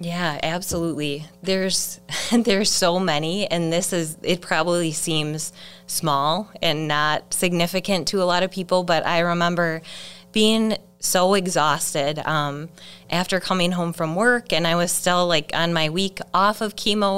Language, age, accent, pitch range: English, 20-39, American, 155-190 Hz